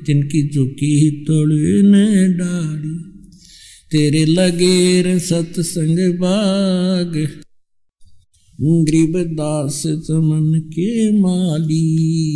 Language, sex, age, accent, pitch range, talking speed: Hindi, male, 60-79, native, 150-185 Hz, 50 wpm